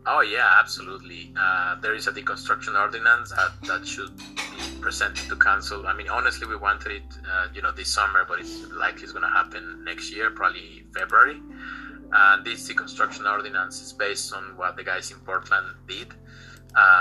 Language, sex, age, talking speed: English, male, 30-49, 185 wpm